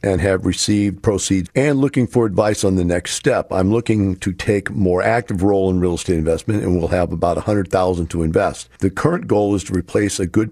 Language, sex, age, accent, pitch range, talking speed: English, male, 50-69, American, 85-110 Hz, 230 wpm